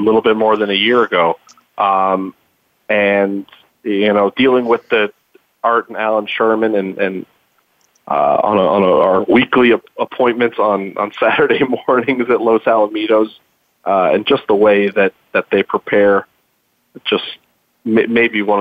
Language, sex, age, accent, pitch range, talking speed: English, male, 30-49, American, 100-115 Hz, 160 wpm